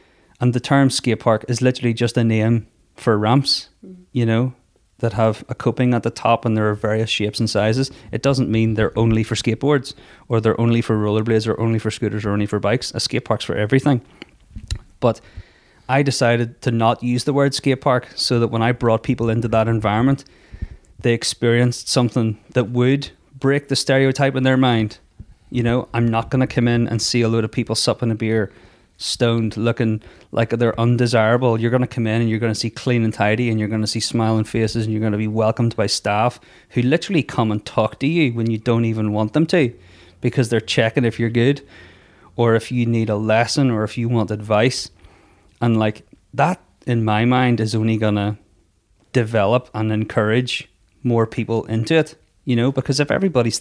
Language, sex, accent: English, male, Irish